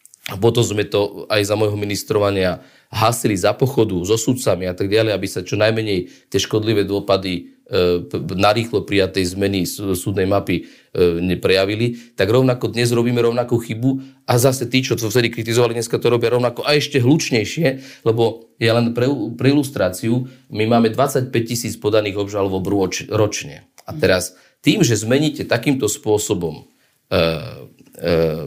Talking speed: 155 wpm